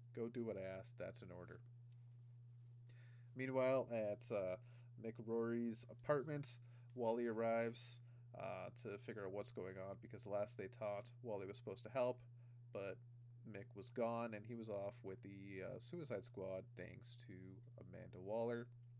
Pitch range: 110-120 Hz